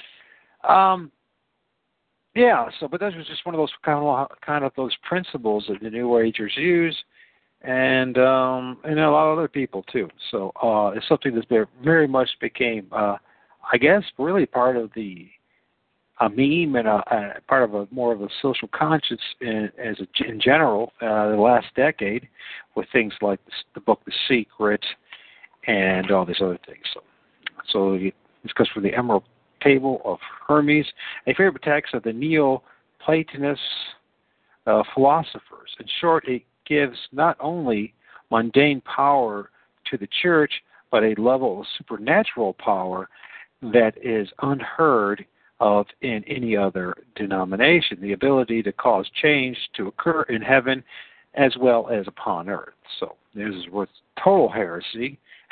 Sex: male